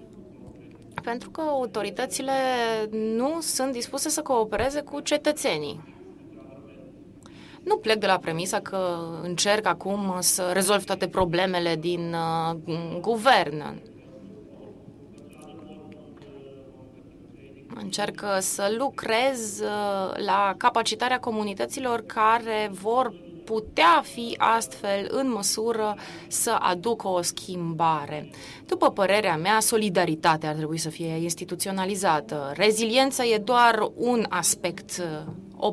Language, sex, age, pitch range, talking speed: French, female, 20-39, 180-235 Hz, 95 wpm